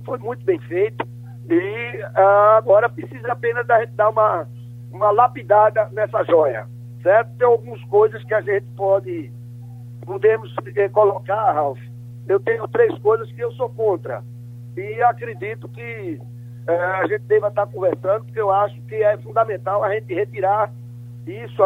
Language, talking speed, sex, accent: Portuguese, 160 wpm, male, Brazilian